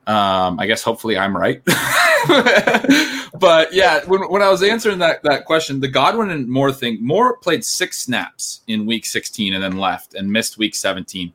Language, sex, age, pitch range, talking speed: English, male, 20-39, 105-150 Hz, 185 wpm